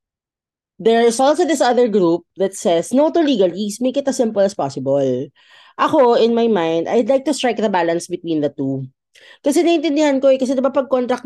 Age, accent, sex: 20-39, native, female